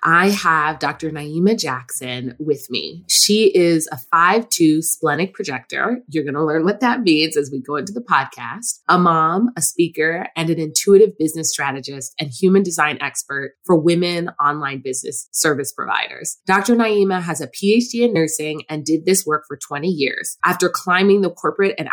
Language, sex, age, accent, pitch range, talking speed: English, female, 20-39, American, 155-195 Hz, 175 wpm